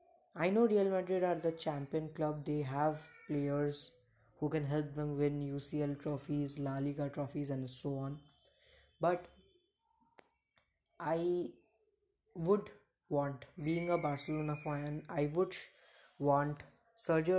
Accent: native